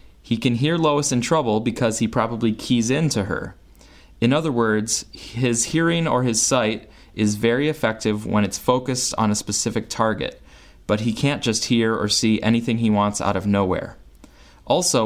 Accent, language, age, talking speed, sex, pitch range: American, English, 30-49, 180 wpm, male, 95-120 Hz